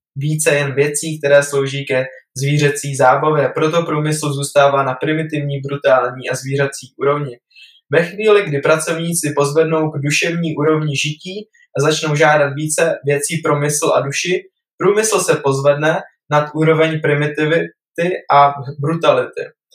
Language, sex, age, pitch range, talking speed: Czech, male, 20-39, 145-170 Hz, 130 wpm